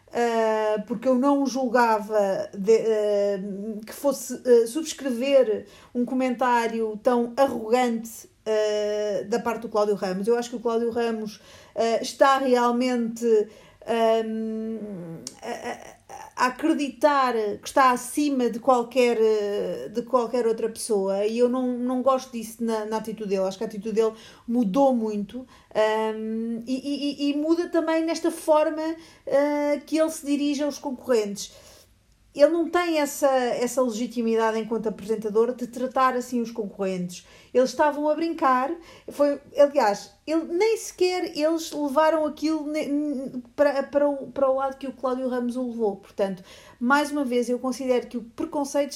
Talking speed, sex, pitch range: 135 wpm, female, 225-285 Hz